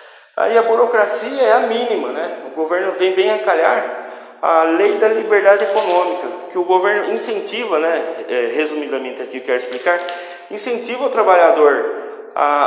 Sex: male